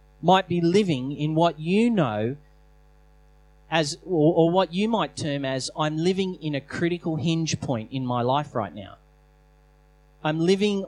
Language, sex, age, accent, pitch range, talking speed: English, male, 30-49, Australian, 135-175 Hz, 155 wpm